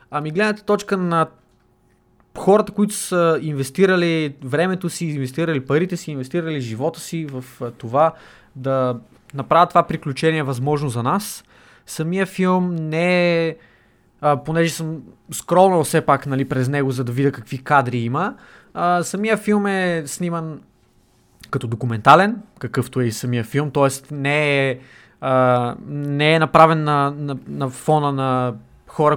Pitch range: 130-165 Hz